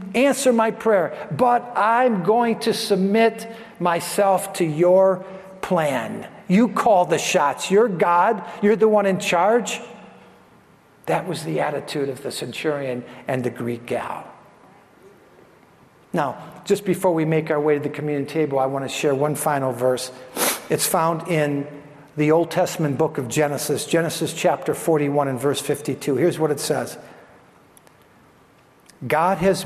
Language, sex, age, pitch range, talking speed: English, male, 50-69, 145-195 Hz, 150 wpm